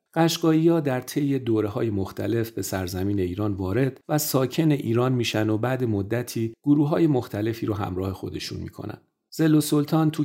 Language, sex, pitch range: Persian, male, 95-130 Hz